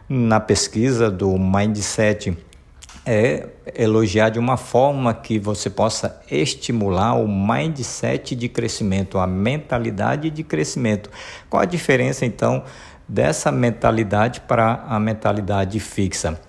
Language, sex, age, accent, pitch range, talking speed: Portuguese, male, 50-69, Brazilian, 100-125 Hz, 115 wpm